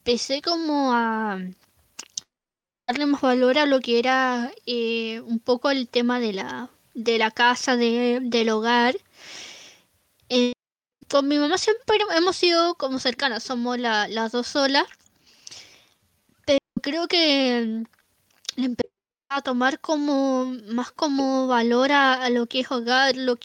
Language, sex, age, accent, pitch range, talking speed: Spanish, female, 10-29, Argentinian, 235-270 Hz, 125 wpm